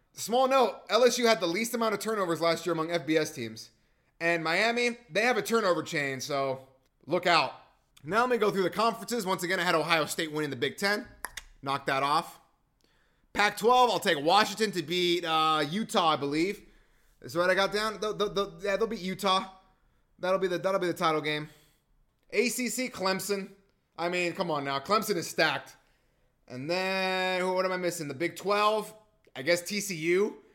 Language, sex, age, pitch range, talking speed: English, male, 30-49, 170-215 Hz, 180 wpm